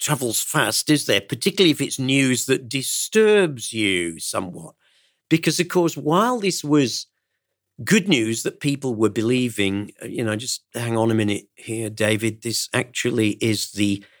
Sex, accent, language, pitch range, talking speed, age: male, British, English, 110-130 Hz, 155 wpm, 50-69